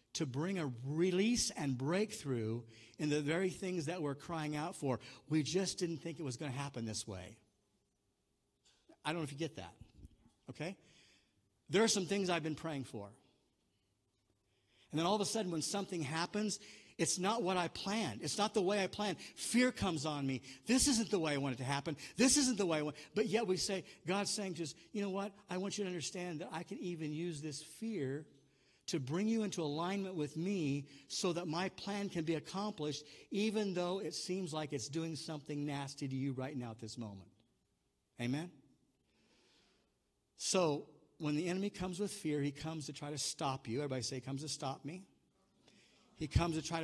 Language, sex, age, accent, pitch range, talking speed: English, male, 50-69, American, 130-185 Hz, 205 wpm